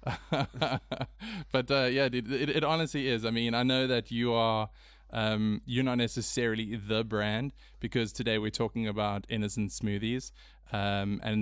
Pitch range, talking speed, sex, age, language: 105-115 Hz, 150 wpm, male, 20-39, English